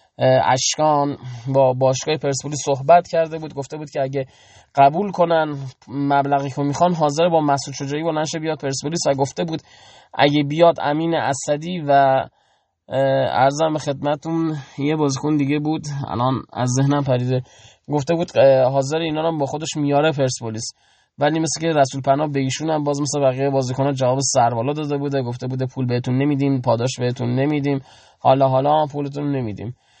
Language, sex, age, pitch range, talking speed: Persian, male, 20-39, 135-155 Hz, 160 wpm